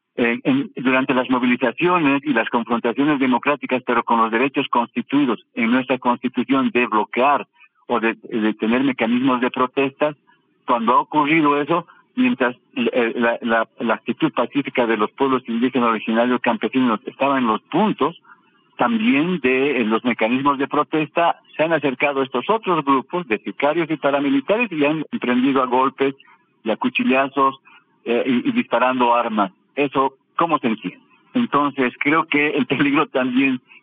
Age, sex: 50-69, male